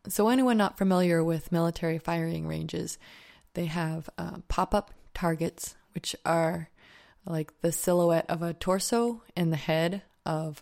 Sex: female